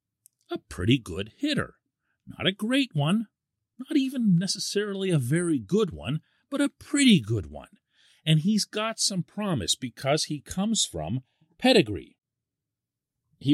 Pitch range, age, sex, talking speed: 115-170 Hz, 40-59, male, 135 wpm